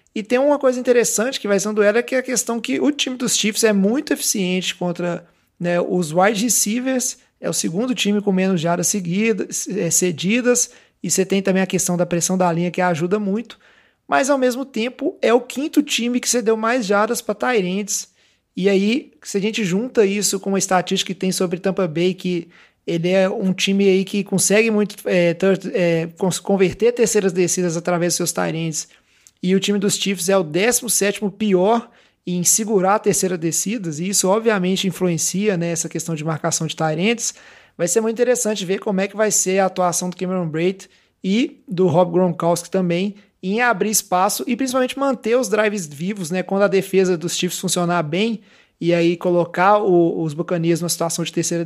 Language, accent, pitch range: Portuguese, Brazilian, 180-220 Hz